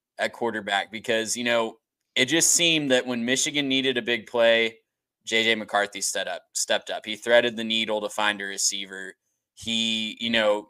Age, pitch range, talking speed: 20-39, 105-125 Hz, 170 wpm